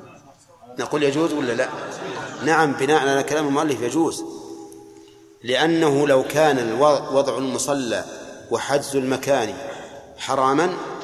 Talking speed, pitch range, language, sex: 100 wpm, 130-155 Hz, Arabic, male